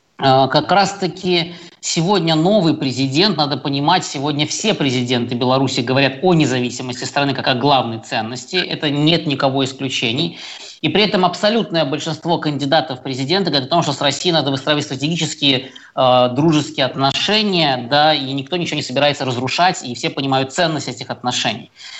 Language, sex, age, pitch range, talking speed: Russian, male, 20-39, 135-170 Hz, 155 wpm